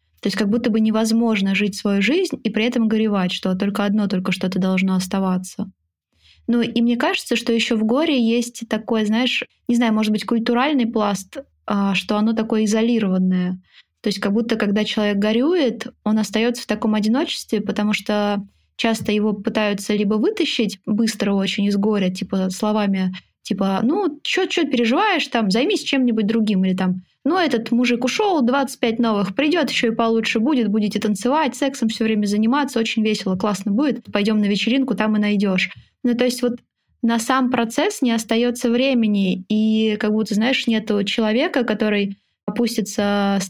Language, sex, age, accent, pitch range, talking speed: Russian, female, 20-39, native, 200-240 Hz, 170 wpm